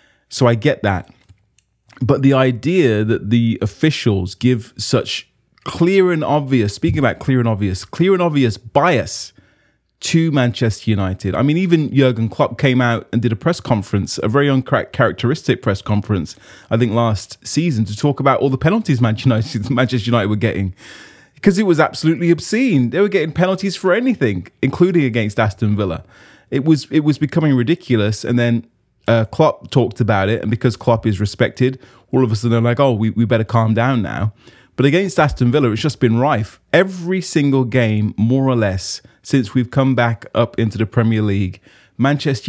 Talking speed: 180 wpm